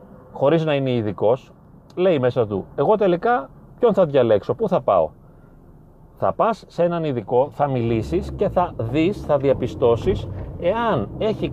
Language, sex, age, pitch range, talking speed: Greek, male, 30-49, 120-170 Hz, 150 wpm